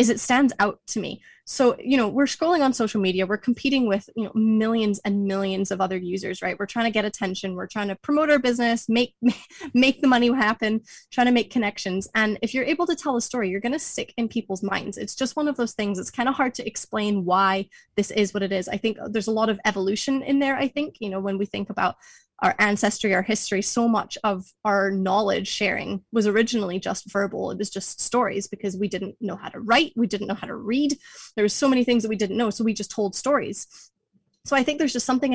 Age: 20-39